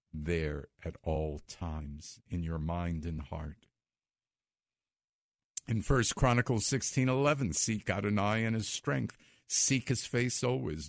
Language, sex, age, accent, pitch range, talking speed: English, male, 50-69, American, 100-135 Hz, 120 wpm